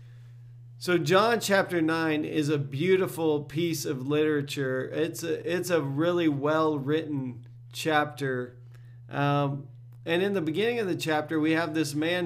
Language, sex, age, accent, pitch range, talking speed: English, male, 40-59, American, 125-160 Hz, 135 wpm